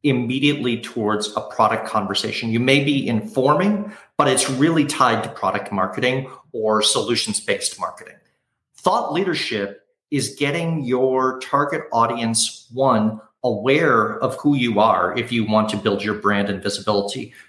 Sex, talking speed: male, 140 wpm